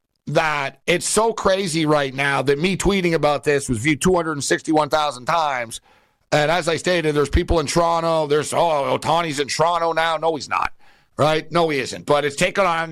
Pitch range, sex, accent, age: 145-185 Hz, male, American, 60-79